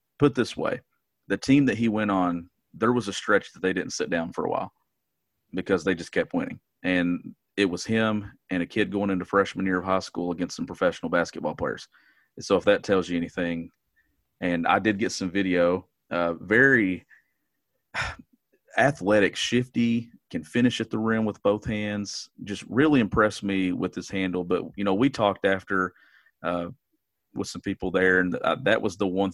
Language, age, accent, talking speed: English, 40-59, American, 190 wpm